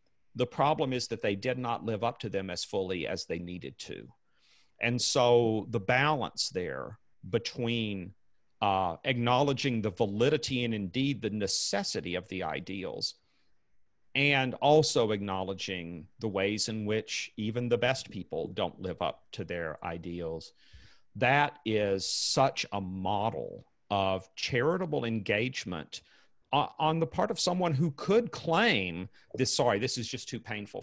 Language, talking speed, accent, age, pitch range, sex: English, 145 wpm, American, 40-59, 105-140 Hz, male